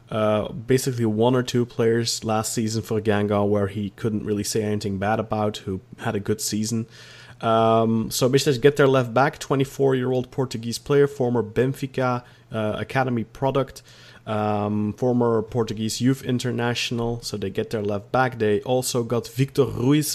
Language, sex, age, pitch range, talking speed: English, male, 30-49, 105-125 Hz, 165 wpm